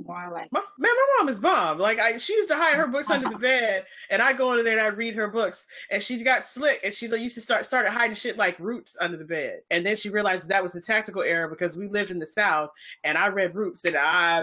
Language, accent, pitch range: English, American, 160-225 Hz